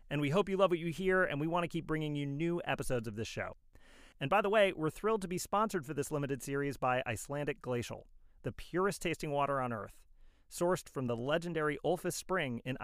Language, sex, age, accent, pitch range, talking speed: English, male, 30-49, American, 125-170 Hz, 230 wpm